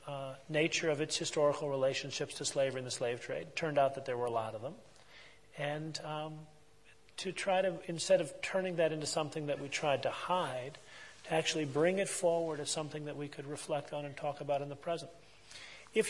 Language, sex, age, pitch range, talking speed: English, male, 40-59, 135-160 Hz, 215 wpm